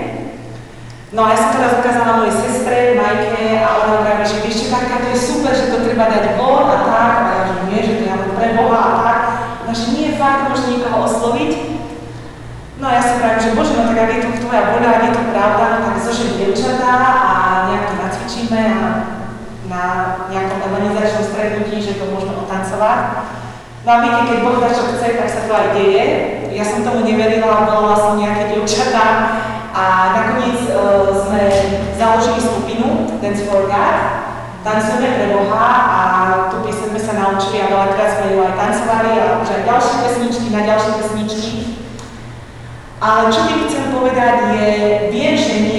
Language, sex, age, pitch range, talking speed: Czech, female, 30-49, 200-230 Hz, 190 wpm